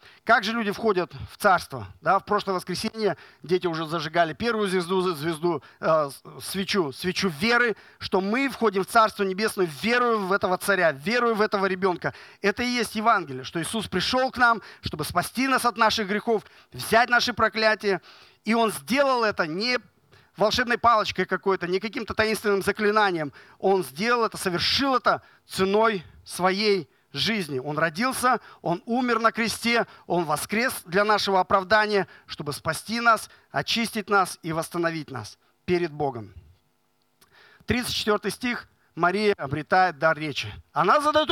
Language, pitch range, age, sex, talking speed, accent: Russian, 170-225 Hz, 40-59, male, 145 wpm, native